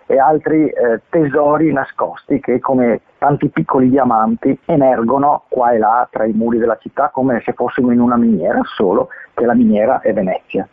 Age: 40-59